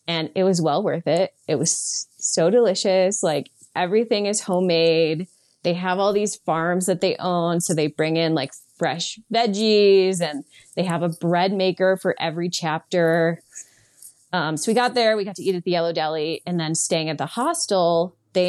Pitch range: 160-190 Hz